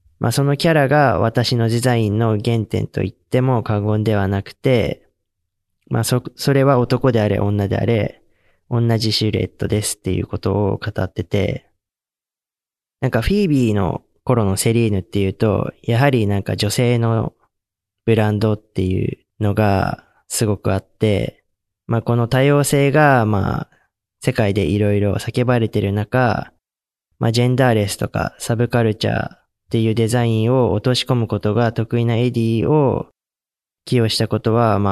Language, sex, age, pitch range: Japanese, male, 20-39, 100-120 Hz